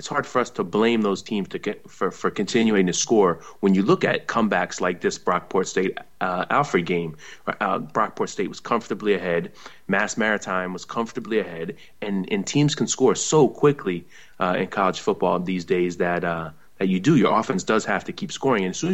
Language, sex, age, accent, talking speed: English, male, 30-49, American, 210 wpm